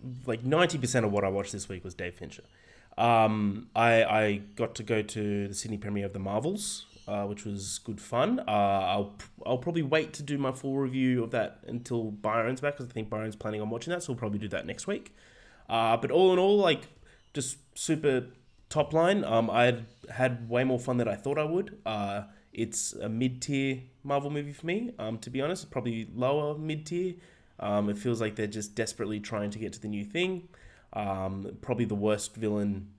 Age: 20-39